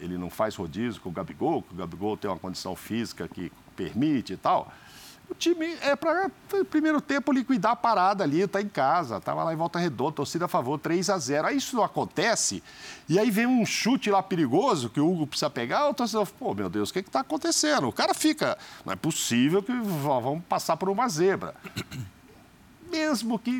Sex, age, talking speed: male, 50-69, 215 wpm